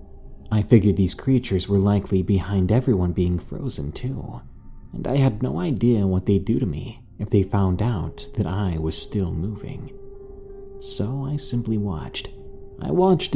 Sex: male